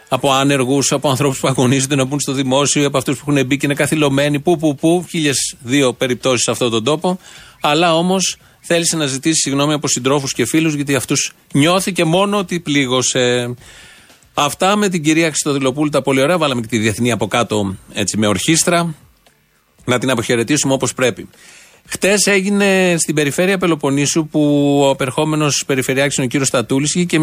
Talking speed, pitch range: 170 wpm, 125-165 Hz